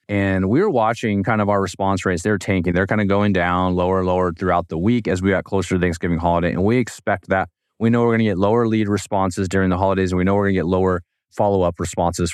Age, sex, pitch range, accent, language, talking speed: 20-39, male, 95-110 Hz, American, English, 255 wpm